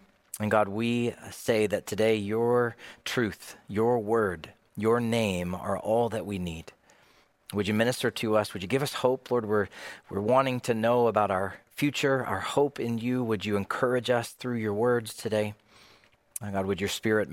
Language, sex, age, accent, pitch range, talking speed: English, male, 30-49, American, 100-125 Hz, 180 wpm